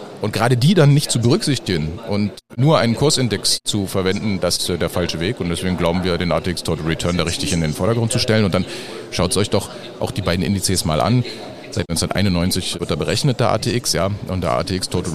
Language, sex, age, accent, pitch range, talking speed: German, male, 40-59, German, 90-115 Hz, 225 wpm